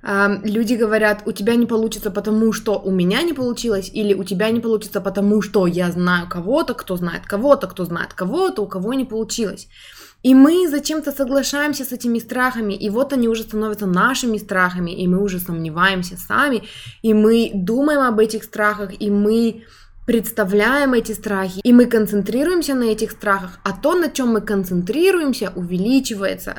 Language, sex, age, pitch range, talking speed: Russian, female, 20-39, 195-240 Hz, 170 wpm